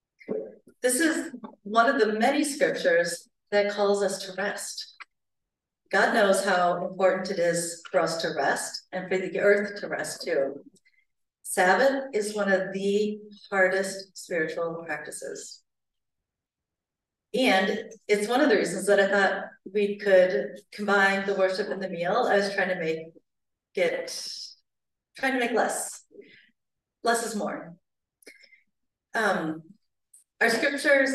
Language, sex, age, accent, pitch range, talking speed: English, female, 40-59, American, 185-230 Hz, 135 wpm